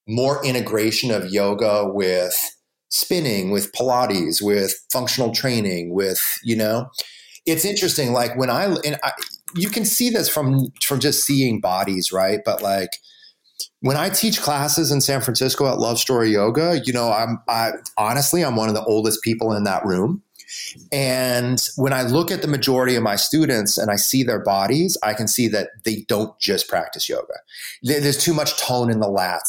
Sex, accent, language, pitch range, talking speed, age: male, American, English, 105-145 Hz, 180 wpm, 30-49